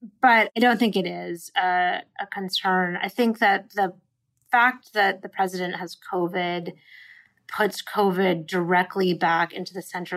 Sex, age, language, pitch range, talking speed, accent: female, 30-49, English, 185-225 Hz, 155 wpm, American